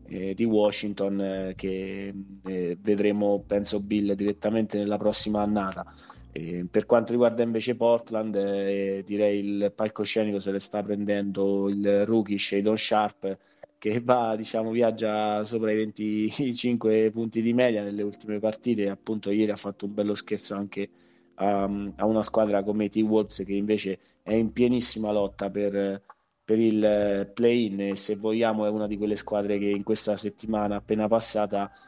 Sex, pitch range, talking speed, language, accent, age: male, 100-110 Hz, 140 wpm, Italian, native, 20-39